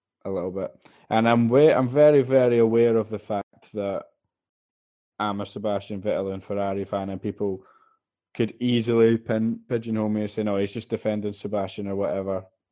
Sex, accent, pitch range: male, British, 105-125 Hz